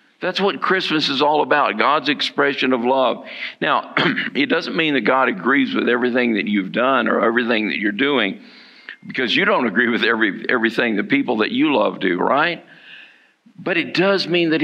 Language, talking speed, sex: English, 185 wpm, male